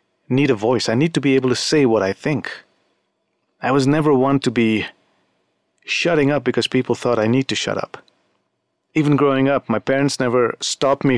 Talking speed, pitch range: 200 wpm, 115-140 Hz